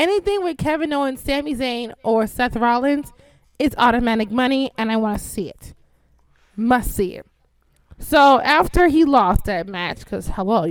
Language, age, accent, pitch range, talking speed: English, 20-39, American, 190-255 Hz, 165 wpm